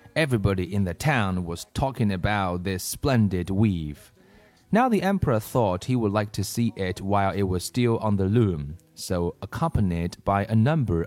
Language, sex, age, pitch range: Chinese, male, 30-49, 95-150 Hz